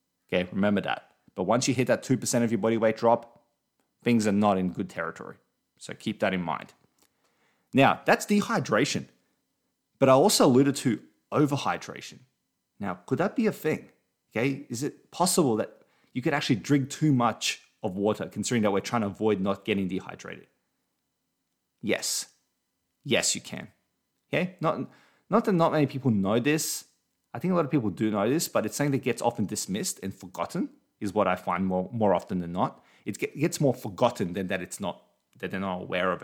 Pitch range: 100-140 Hz